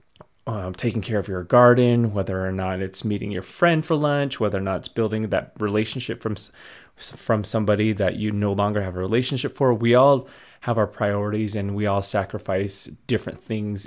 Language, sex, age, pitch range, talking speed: English, male, 30-49, 95-115 Hz, 190 wpm